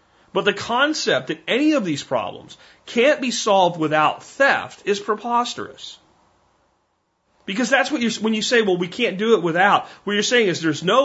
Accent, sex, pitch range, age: American, male, 150-225 Hz, 40-59